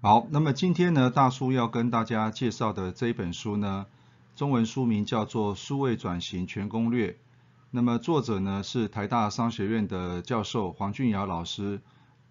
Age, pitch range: 30-49, 95-125 Hz